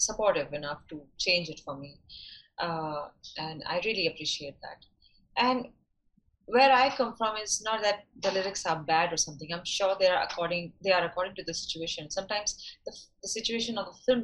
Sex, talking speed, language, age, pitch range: female, 190 wpm, Arabic, 30-49, 170-230 Hz